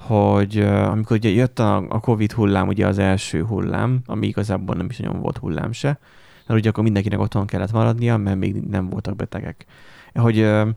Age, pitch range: 30-49, 100-120 Hz